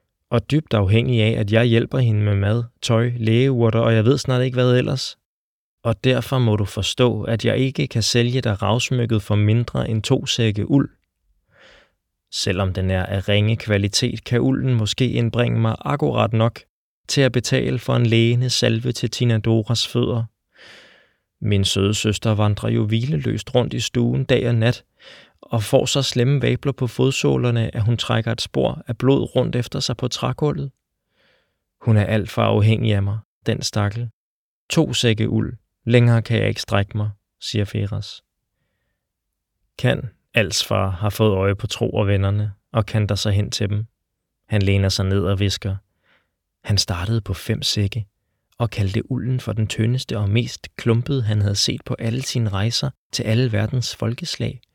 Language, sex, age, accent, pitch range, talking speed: Danish, male, 20-39, native, 105-125 Hz, 175 wpm